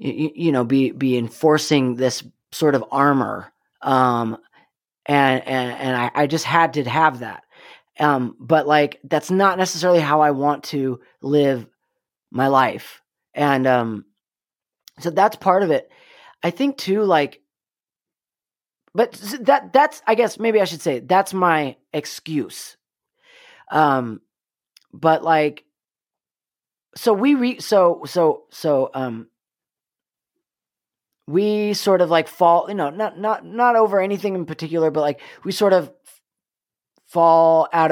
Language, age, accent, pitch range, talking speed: English, 30-49, American, 135-185 Hz, 140 wpm